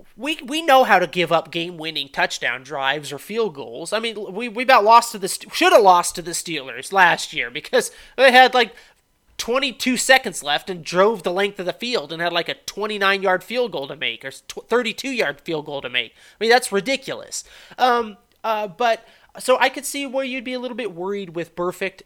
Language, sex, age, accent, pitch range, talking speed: English, male, 30-49, American, 150-225 Hz, 220 wpm